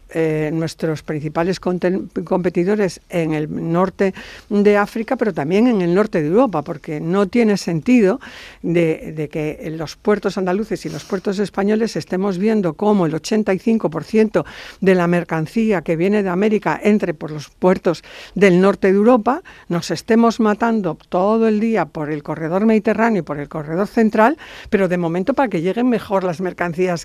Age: 60-79